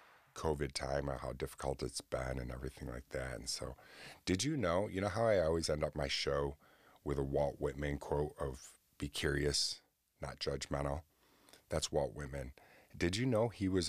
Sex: male